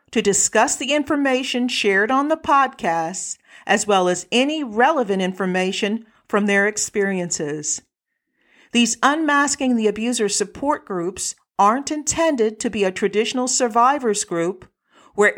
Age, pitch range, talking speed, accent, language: 50-69, 200-270 Hz, 125 wpm, American, English